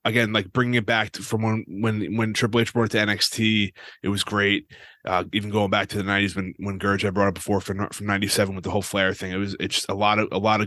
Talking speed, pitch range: 285 wpm, 100-120 Hz